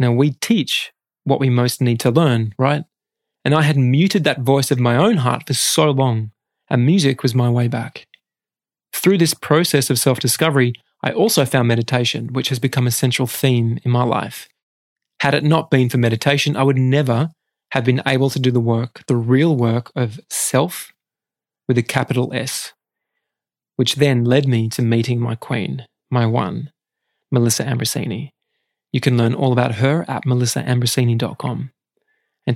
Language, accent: English, Australian